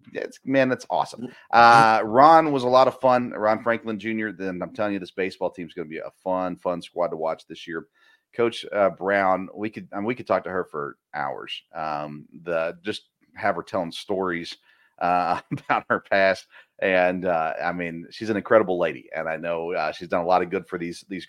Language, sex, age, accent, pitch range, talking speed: English, male, 40-59, American, 85-110 Hz, 225 wpm